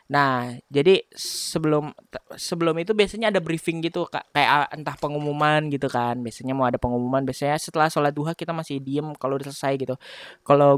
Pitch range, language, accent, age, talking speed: 145-175 Hz, Indonesian, native, 20-39, 160 wpm